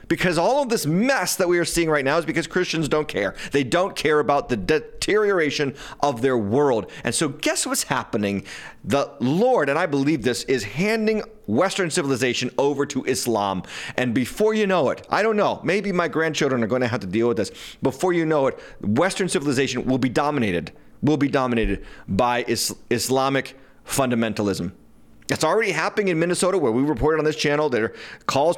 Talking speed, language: 190 wpm, English